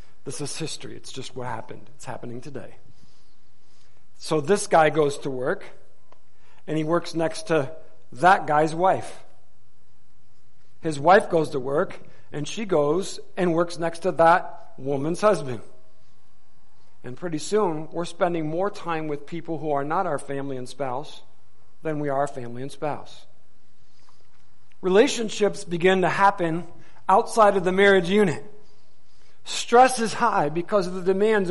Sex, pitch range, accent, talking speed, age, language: male, 135-205 Hz, American, 145 wpm, 50-69, English